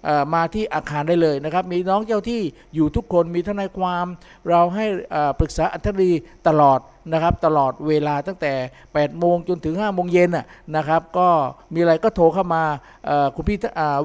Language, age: Thai, 50-69